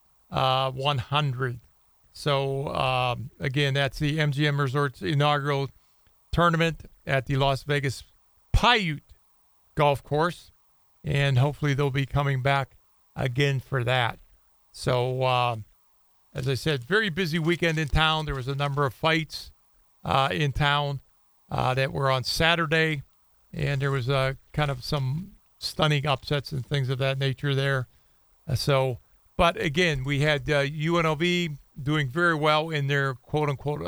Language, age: English, 40-59